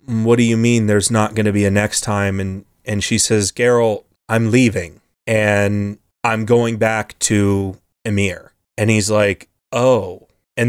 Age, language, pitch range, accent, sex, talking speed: 30-49, English, 100-115 Hz, American, male, 170 wpm